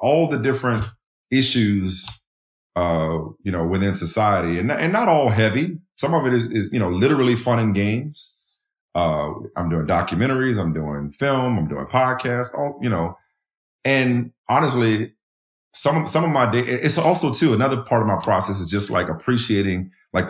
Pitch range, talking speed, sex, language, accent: 90-135 Hz, 170 wpm, male, English, American